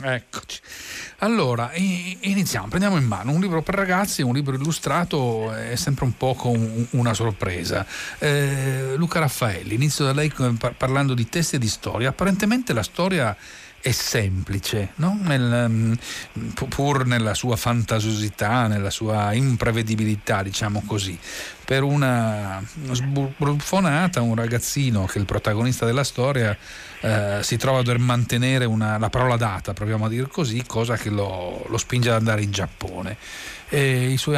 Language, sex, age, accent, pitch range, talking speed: Italian, male, 40-59, native, 110-140 Hz, 145 wpm